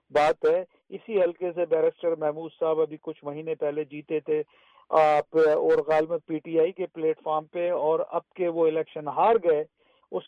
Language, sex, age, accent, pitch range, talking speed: English, male, 50-69, Indian, 170-195 Hz, 180 wpm